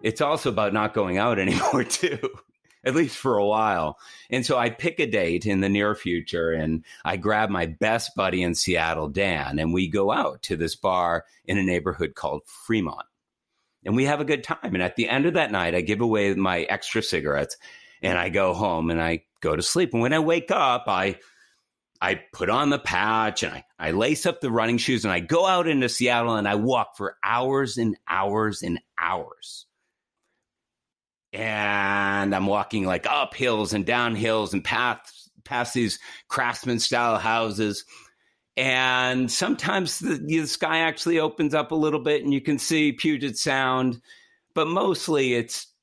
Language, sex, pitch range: English, male, 95-130 Hz